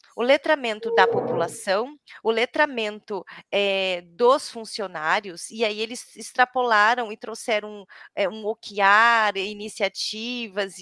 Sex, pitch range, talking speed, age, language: female, 195-255 Hz, 95 wpm, 30-49, Portuguese